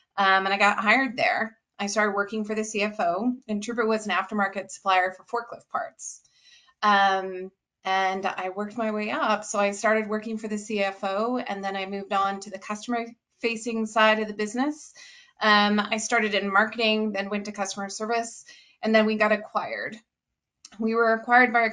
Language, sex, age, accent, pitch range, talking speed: English, female, 30-49, American, 200-235 Hz, 190 wpm